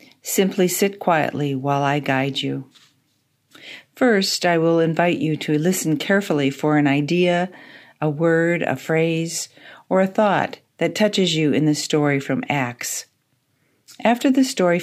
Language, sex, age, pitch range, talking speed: English, female, 50-69, 145-185 Hz, 145 wpm